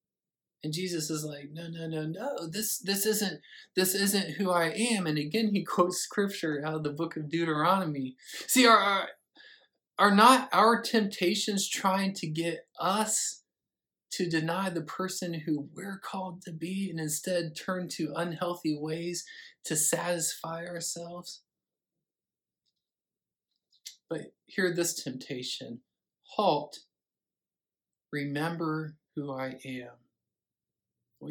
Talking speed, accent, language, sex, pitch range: 125 wpm, American, English, male, 155-200 Hz